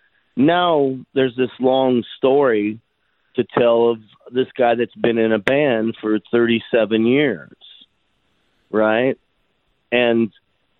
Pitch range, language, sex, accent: 100-130 Hz, English, male, American